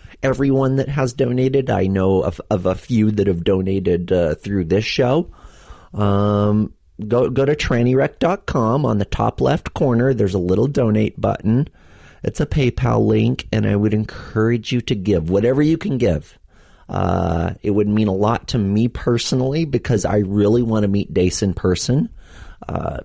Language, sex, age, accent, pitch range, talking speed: English, male, 30-49, American, 90-120 Hz, 170 wpm